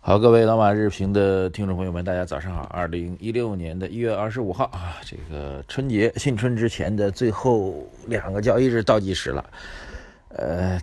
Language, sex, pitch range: Chinese, male, 85-115 Hz